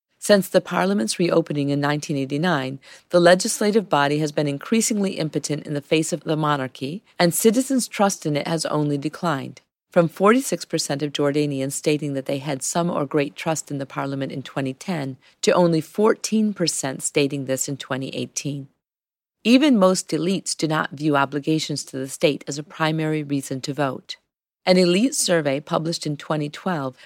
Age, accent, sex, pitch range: 40-59, American, female, 145-180 Hz